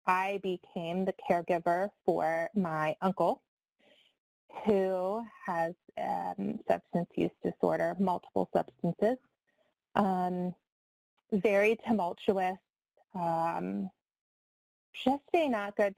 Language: English